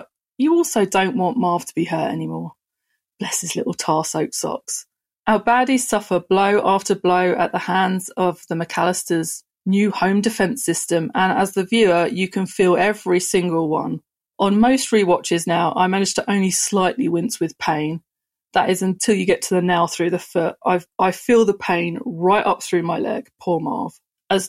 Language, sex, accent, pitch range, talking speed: English, female, British, 170-205 Hz, 185 wpm